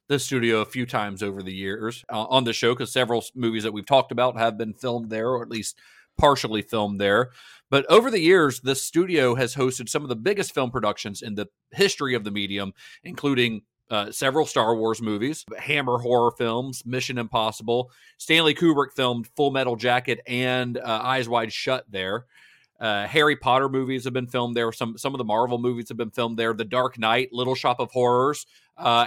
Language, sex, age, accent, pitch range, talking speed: English, male, 40-59, American, 110-130 Hz, 200 wpm